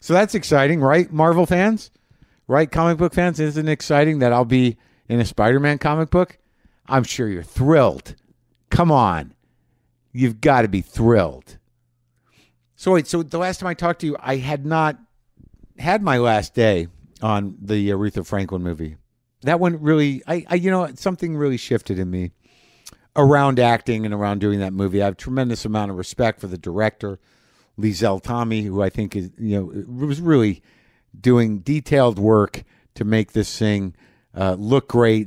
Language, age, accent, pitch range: English, 60-79, American, 100-135 Hz